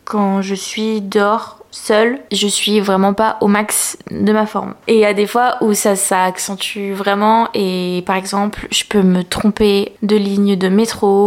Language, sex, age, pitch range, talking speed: French, female, 20-39, 195-220 Hz, 190 wpm